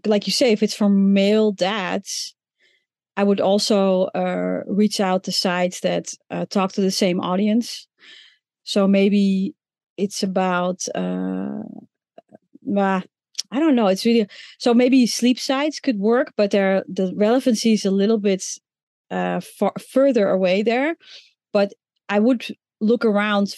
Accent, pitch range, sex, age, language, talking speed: Dutch, 190-225 Hz, female, 30-49, English, 150 wpm